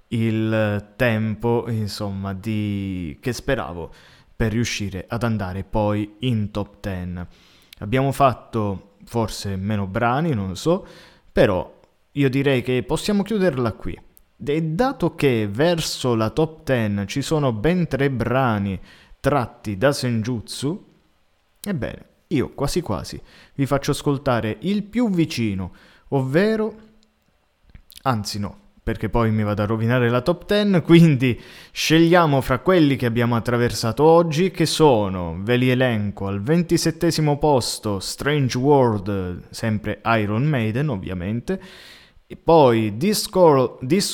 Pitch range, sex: 105-160 Hz, male